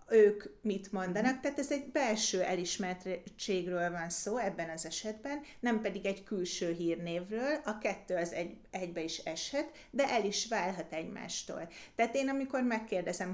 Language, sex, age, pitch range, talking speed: Hungarian, female, 30-49, 175-225 Hz, 150 wpm